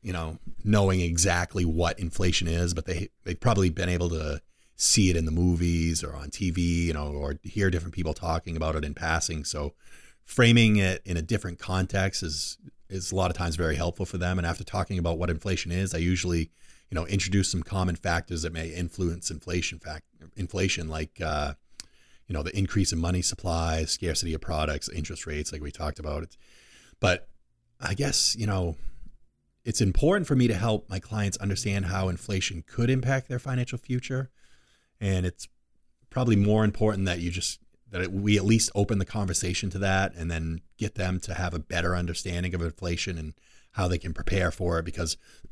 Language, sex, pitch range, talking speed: English, male, 80-95 Hz, 195 wpm